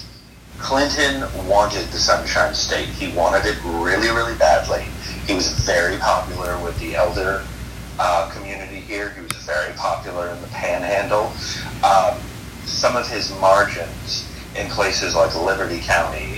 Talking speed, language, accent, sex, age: 140 wpm, English, American, male, 30-49